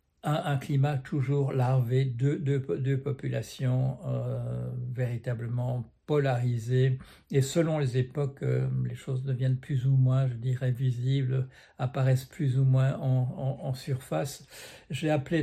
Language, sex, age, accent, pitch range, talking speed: French, male, 60-79, French, 130-140 Hz, 140 wpm